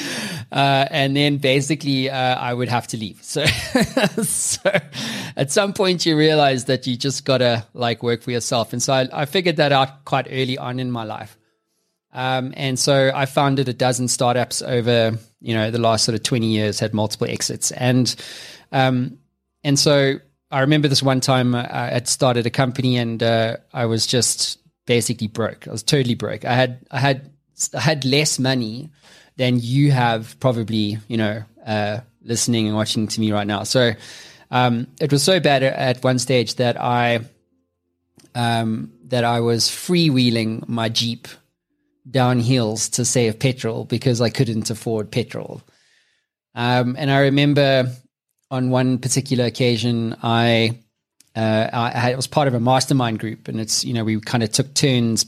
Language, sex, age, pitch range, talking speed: English, male, 20-39, 115-135 Hz, 175 wpm